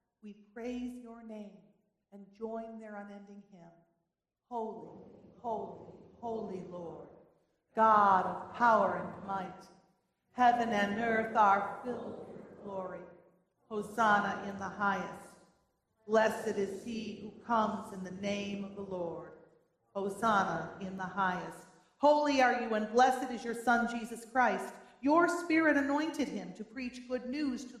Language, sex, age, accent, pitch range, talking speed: English, female, 40-59, American, 200-250 Hz, 135 wpm